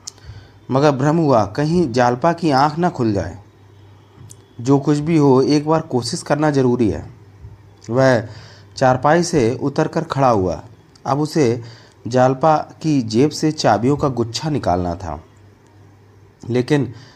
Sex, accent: male, native